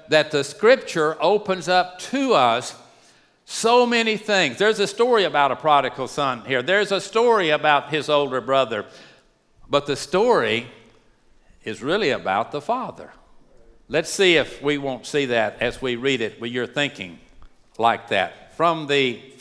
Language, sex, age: English, male, 60-79